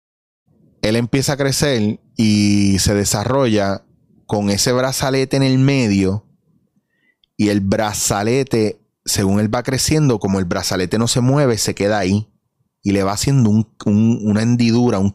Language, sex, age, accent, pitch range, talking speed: Spanish, male, 30-49, Venezuelan, 100-130 Hz, 150 wpm